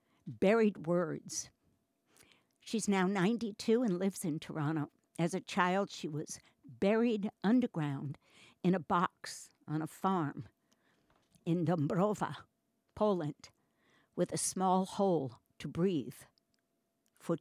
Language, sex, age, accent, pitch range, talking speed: English, female, 60-79, American, 155-200 Hz, 110 wpm